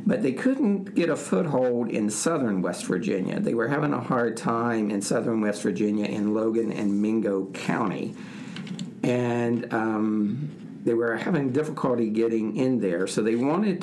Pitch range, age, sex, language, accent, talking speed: 105-140 Hz, 50-69, male, English, American, 160 wpm